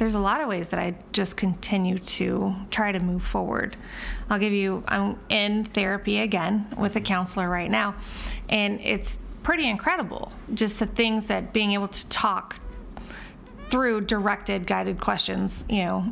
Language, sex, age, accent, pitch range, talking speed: English, female, 30-49, American, 190-220 Hz, 165 wpm